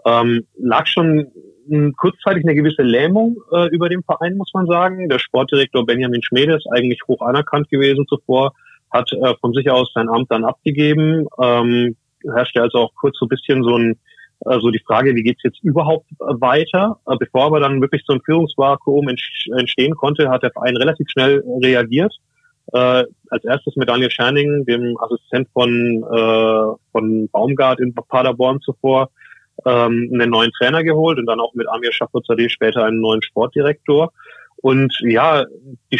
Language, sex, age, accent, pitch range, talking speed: German, male, 30-49, German, 120-145 Hz, 170 wpm